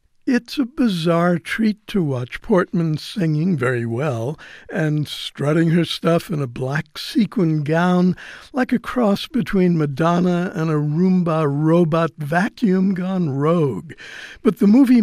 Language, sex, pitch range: English, male, 150-190 Hz